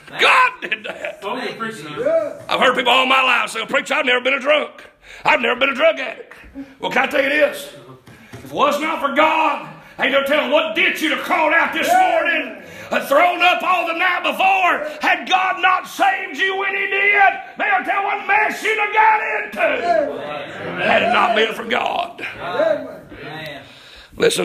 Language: English